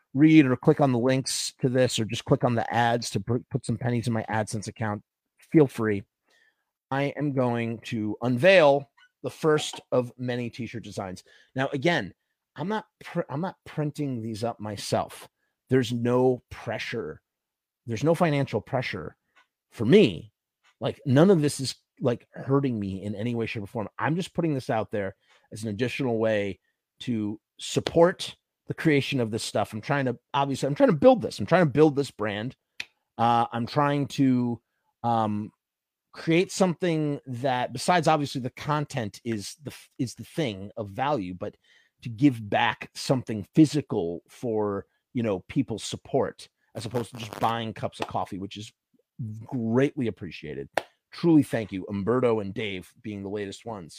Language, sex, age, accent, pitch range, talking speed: English, male, 30-49, American, 110-145 Hz, 170 wpm